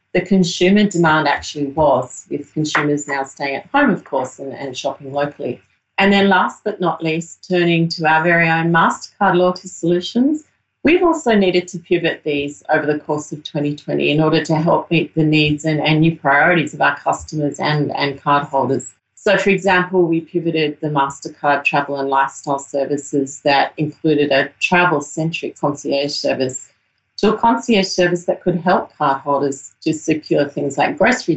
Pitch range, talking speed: 145-175 Hz, 170 wpm